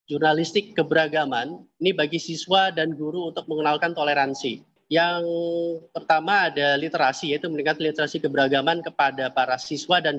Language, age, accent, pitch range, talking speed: Indonesian, 30-49, native, 140-165 Hz, 130 wpm